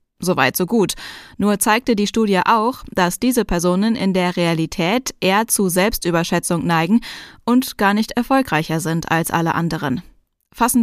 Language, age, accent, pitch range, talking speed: German, 10-29, German, 175-225 Hz, 150 wpm